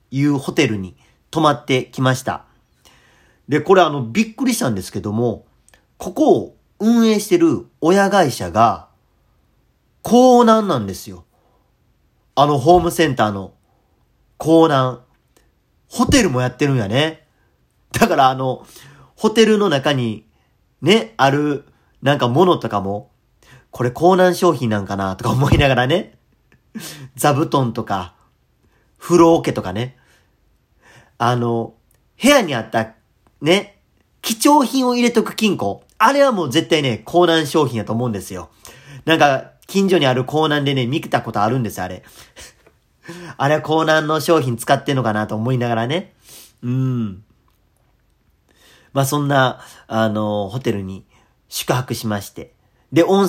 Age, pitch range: 40-59, 115-165 Hz